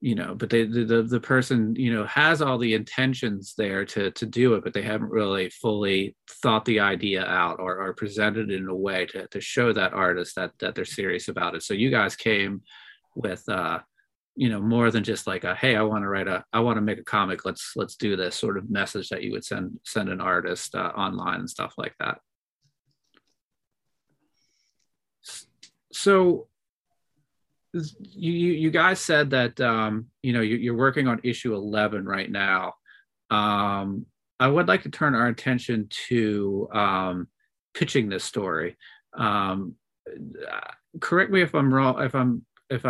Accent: American